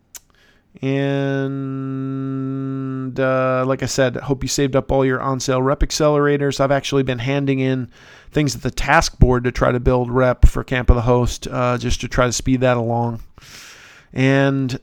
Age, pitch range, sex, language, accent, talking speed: 40-59, 125-135 Hz, male, English, American, 180 wpm